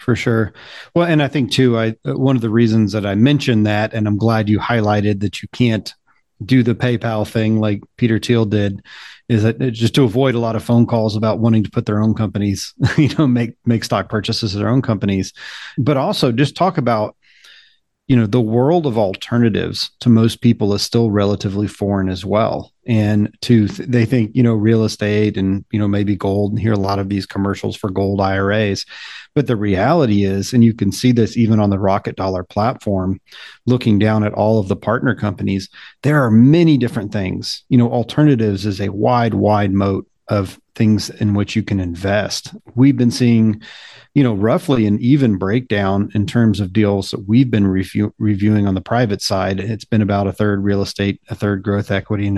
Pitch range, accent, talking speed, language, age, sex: 100-120 Hz, American, 205 wpm, English, 40-59, male